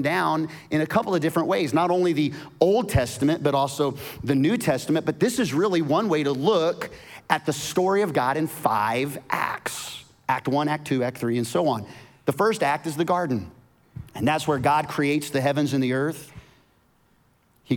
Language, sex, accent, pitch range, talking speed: English, male, American, 115-150 Hz, 200 wpm